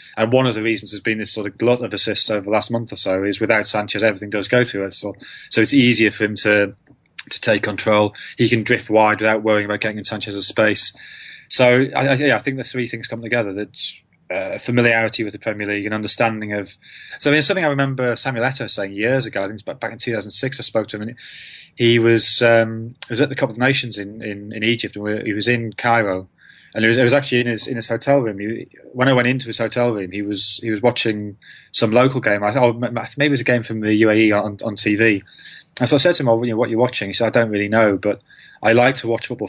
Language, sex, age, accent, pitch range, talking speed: English, male, 20-39, British, 105-125 Hz, 275 wpm